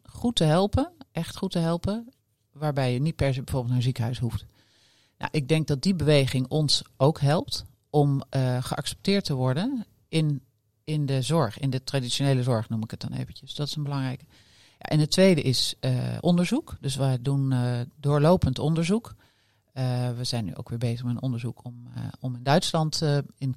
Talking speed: 190 wpm